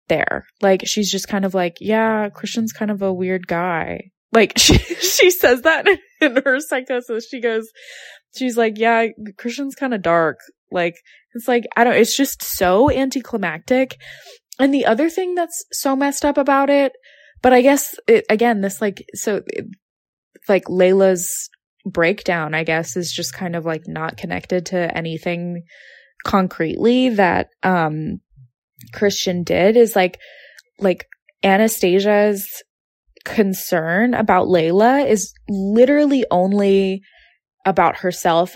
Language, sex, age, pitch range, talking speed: English, female, 20-39, 175-235 Hz, 140 wpm